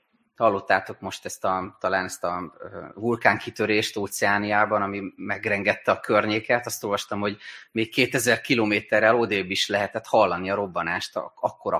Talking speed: 140 wpm